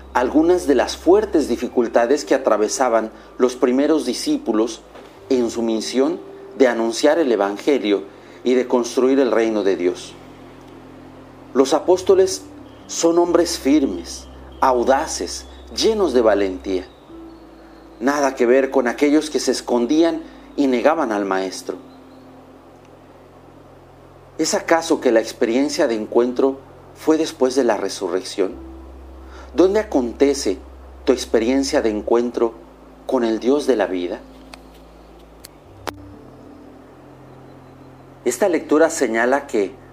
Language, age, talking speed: Spanish, 40-59, 110 wpm